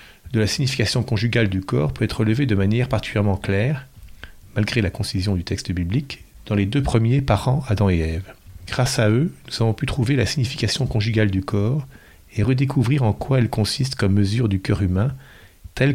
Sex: male